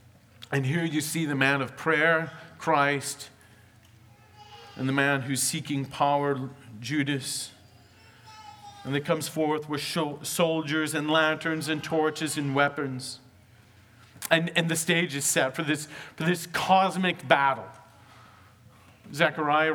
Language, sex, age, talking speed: English, male, 40-59, 120 wpm